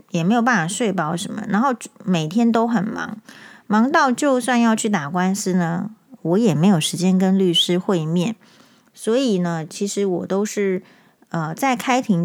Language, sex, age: Chinese, female, 30-49